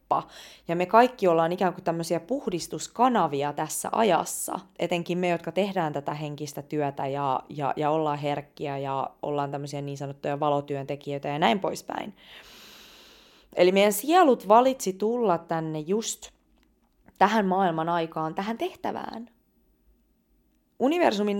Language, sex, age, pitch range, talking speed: Finnish, female, 20-39, 160-220 Hz, 125 wpm